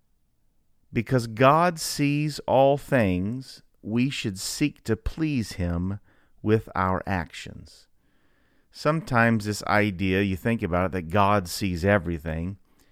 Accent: American